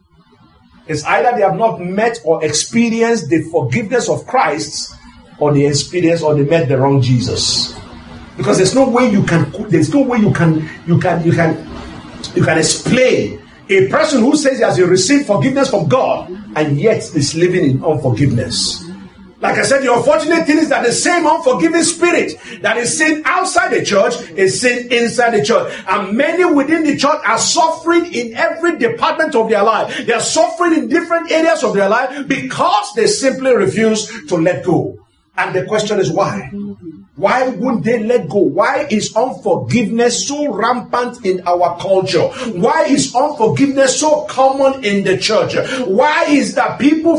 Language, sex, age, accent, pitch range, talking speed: English, male, 50-69, Nigerian, 185-280 Hz, 175 wpm